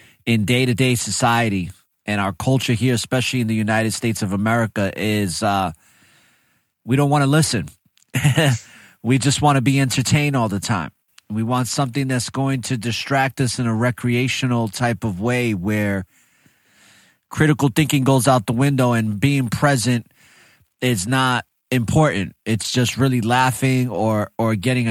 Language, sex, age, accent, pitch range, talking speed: English, male, 30-49, American, 110-135 Hz, 155 wpm